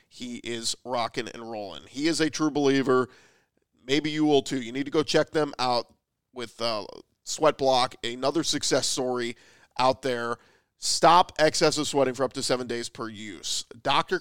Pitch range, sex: 130-155 Hz, male